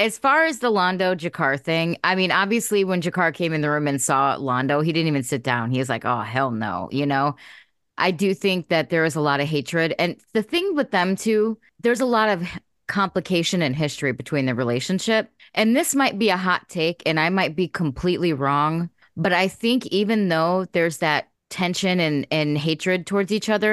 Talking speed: 210 wpm